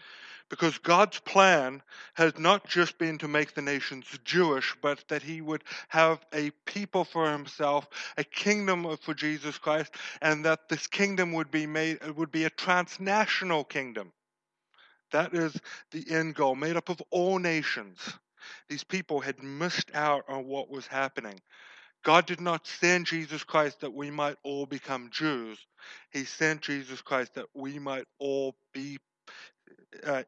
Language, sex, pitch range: English, male, 135-165 Hz